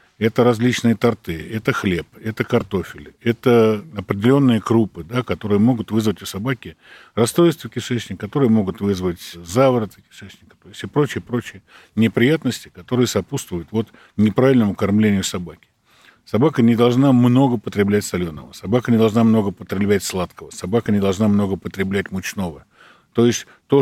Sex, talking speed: male, 135 wpm